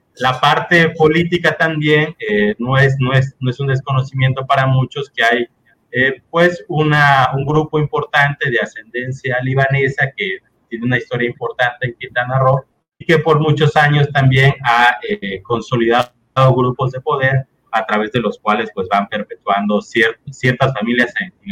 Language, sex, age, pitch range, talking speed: Spanish, male, 30-49, 120-145 Hz, 160 wpm